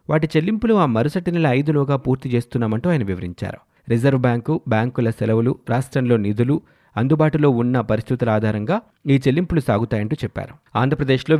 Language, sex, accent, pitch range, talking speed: Telugu, male, native, 110-150 Hz, 130 wpm